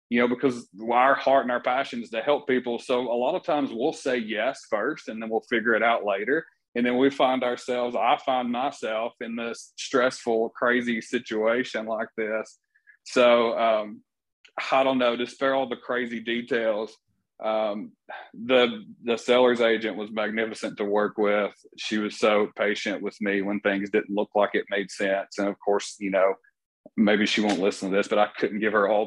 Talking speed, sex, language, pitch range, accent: 195 wpm, male, English, 100-125 Hz, American